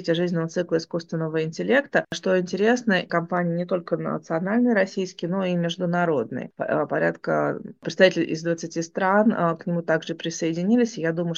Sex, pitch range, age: female, 160-185 Hz, 20-39